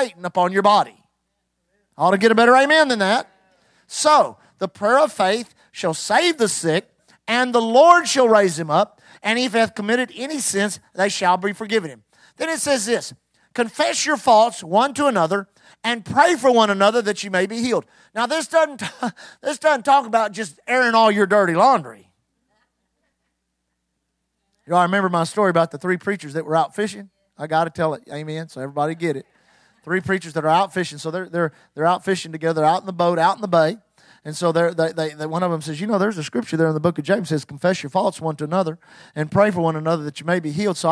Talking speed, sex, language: 230 wpm, male, English